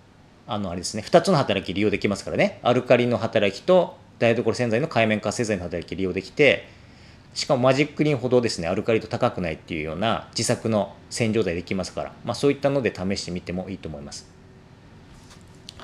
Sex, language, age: male, Japanese, 40-59